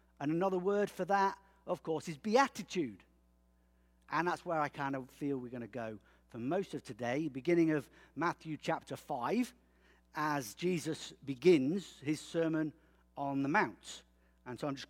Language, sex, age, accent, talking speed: English, male, 50-69, British, 165 wpm